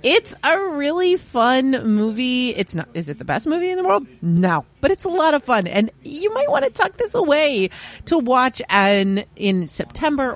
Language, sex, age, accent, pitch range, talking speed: English, female, 40-59, American, 165-250 Hz, 205 wpm